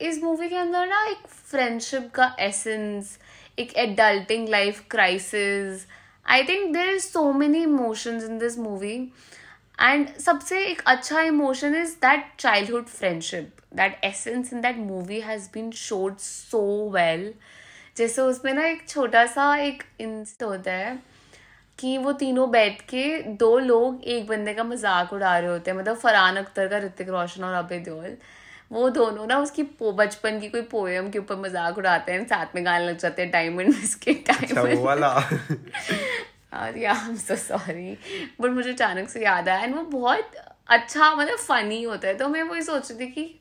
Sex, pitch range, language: female, 200-275 Hz, Hindi